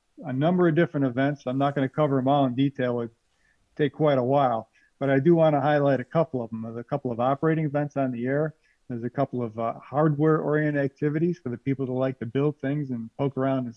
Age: 50-69